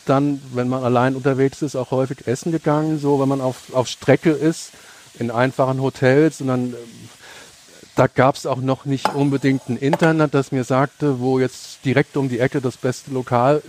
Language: German